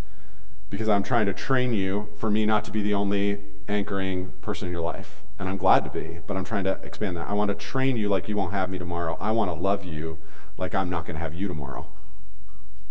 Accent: American